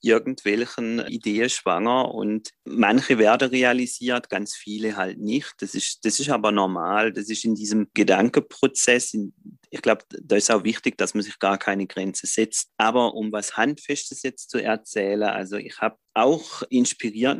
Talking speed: 165 wpm